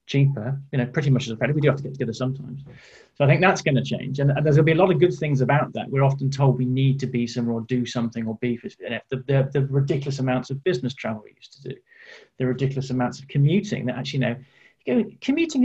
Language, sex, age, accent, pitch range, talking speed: English, male, 30-49, British, 125-150 Hz, 265 wpm